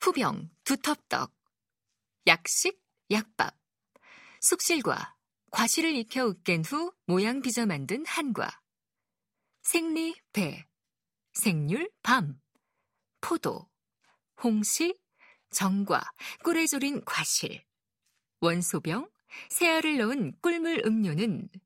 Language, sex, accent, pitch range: Korean, female, native, 190-295 Hz